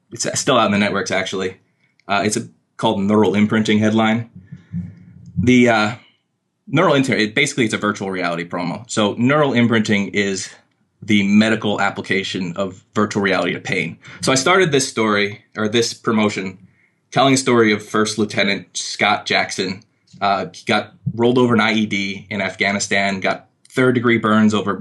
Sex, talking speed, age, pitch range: male, 160 wpm, 20-39, 100-115 Hz